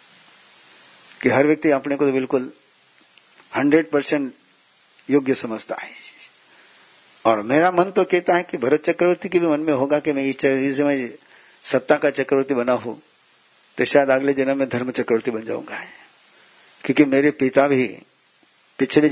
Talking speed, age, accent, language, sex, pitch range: 150 wpm, 60-79, native, Hindi, male, 125-150 Hz